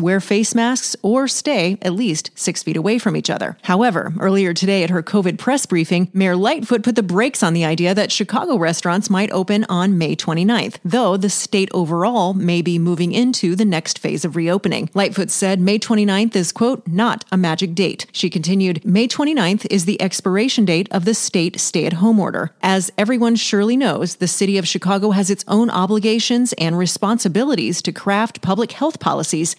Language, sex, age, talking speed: English, female, 30-49, 185 wpm